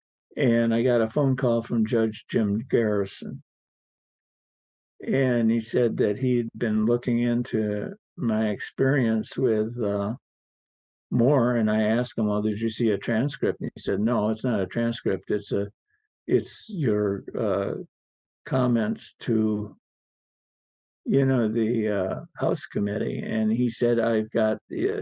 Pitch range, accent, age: 110-125 Hz, American, 50-69